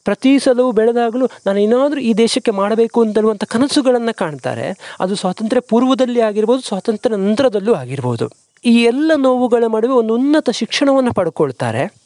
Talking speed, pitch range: 130 wpm, 190-245 Hz